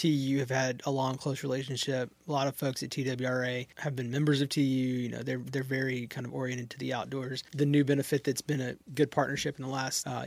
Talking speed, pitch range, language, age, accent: 240 wpm, 130-145 Hz, English, 20-39, American